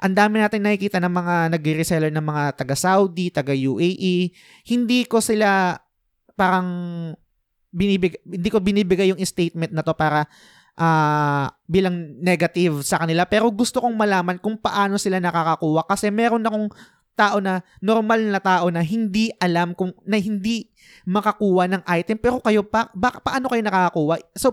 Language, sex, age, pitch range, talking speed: Filipino, male, 20-39, 170-215 Hz, 155 wpm